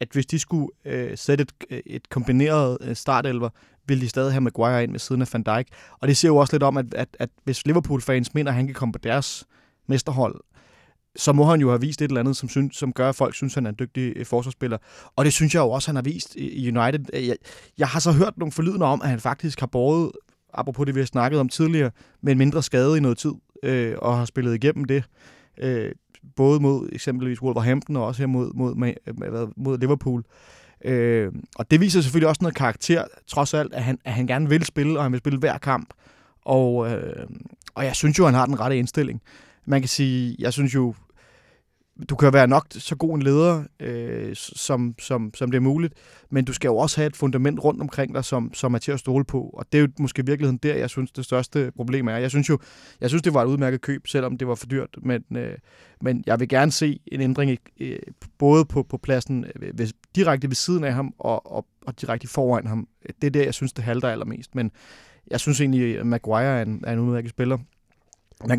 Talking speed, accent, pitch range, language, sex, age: 235 wpm, native, 125-145 Hz, Danish, male, 30-49